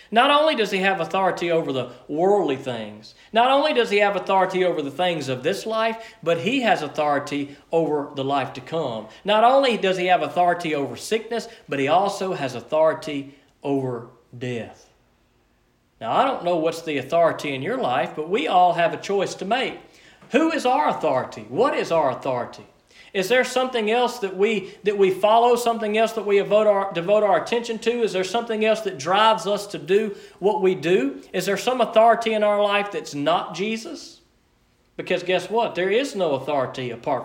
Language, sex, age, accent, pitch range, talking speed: English, male, 40-59, American, 150-220 Hz, 195 wpm